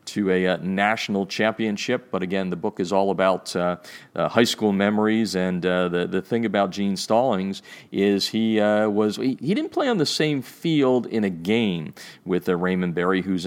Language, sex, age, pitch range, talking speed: English, male, 40-59, 90-105 Hz, 200 wpm